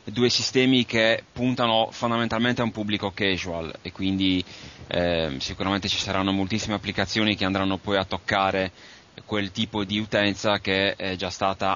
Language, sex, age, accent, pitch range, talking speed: Italian, male, 30-49, native, 95-115 Hz, 155 wpm